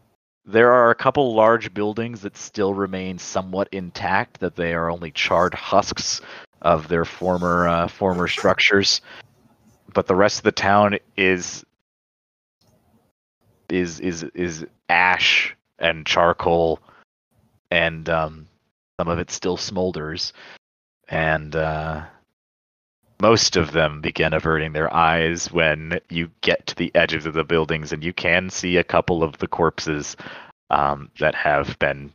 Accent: American